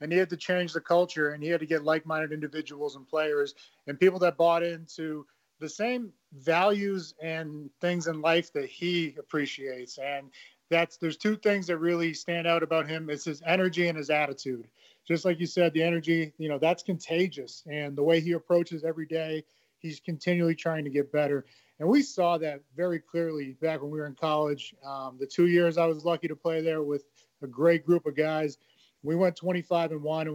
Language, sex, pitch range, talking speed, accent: English, male, 150-170 Hz, 210 wpm, American